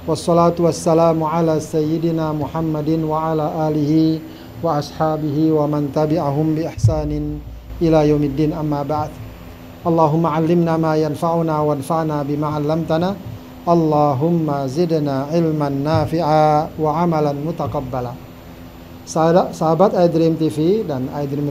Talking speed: 105 wpm